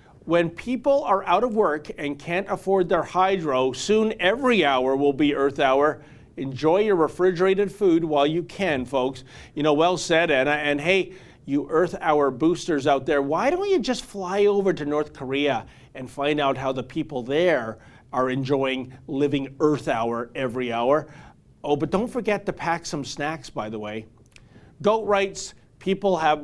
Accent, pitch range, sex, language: American, 135-185 Hz, male, English